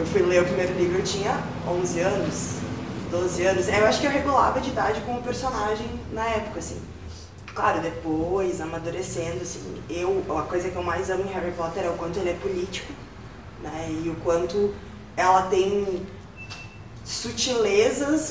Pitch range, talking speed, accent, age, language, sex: 160-245 Hz, 170 wpm, Brazilian, 20-39, Portuguese, female